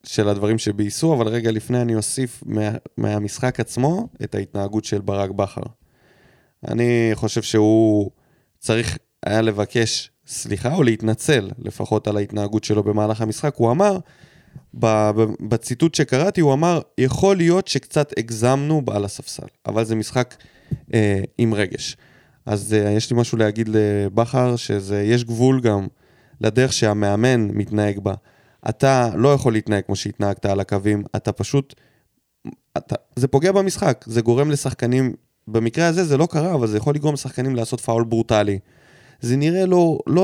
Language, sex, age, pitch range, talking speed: Hebrew, male, 20-39, 110-145 Hz, 145 wpm